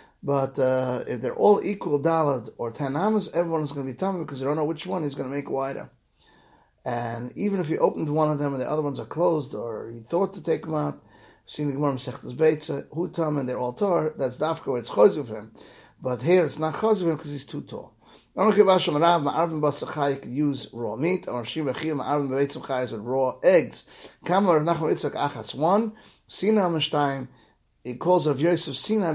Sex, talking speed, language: male, 210 wpm, English